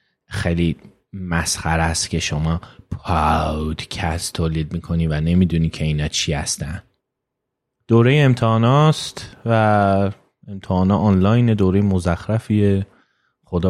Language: Persian